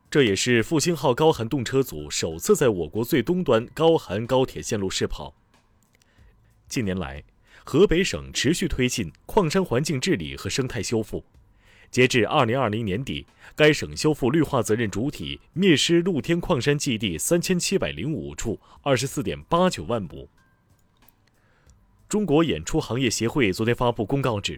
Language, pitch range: Chinese, 105-150 Hz